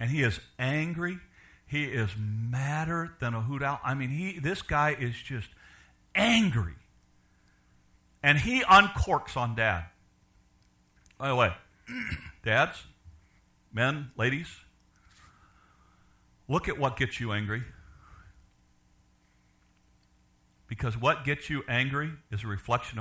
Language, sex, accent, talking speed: English, male, American, 115 wpm